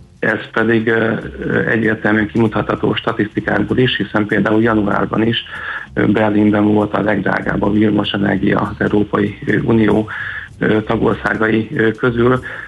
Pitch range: 105-115 Hz